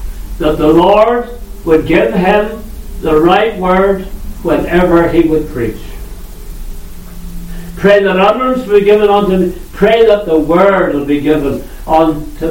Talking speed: 135 wpm